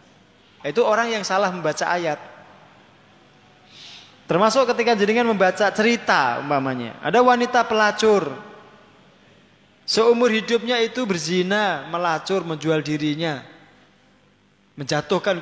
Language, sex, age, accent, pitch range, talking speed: Indonesian, male, 20-39, native, 170-240 Hz, 90 wpm